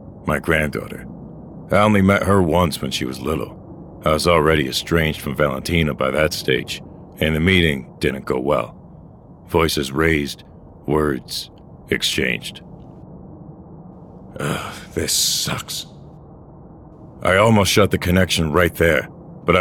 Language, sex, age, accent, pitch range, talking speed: English, male, 50-69, American, 75-90 Hz, 125 wpm